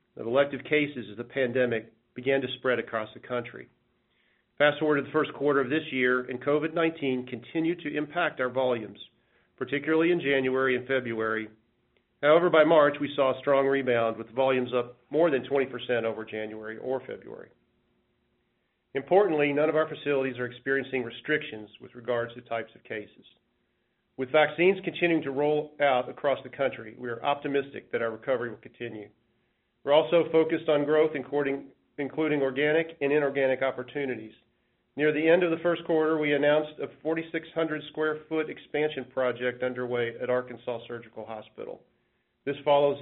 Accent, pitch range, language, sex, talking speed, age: American, 125-150 Hz, English, male, 155 wpm, 40-59